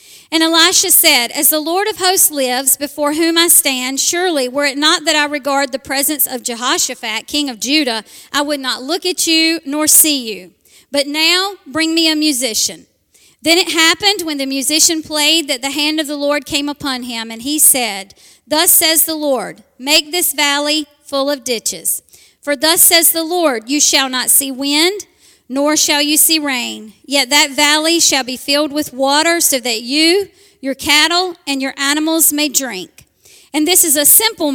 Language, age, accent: English, 40-59, American